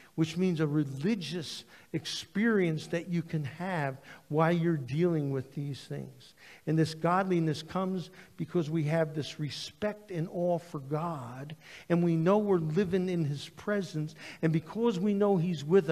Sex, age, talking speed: male, 60-79, 160 wpm